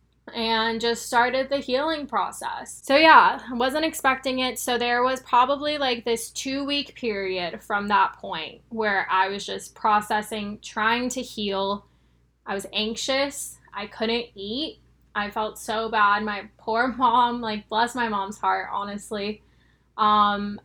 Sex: female